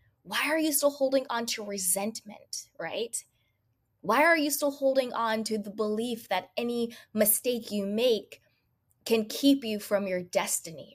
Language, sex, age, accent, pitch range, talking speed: English, female, 20-39, American, 185-245 Hz, 160 wpm